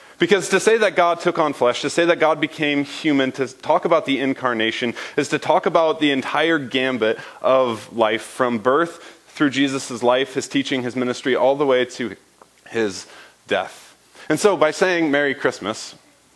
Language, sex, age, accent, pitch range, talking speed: English, male, 30-49, American, 120-155 Hz, 180 wpm